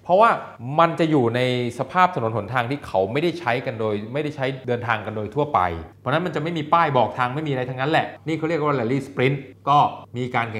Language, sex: Thai, male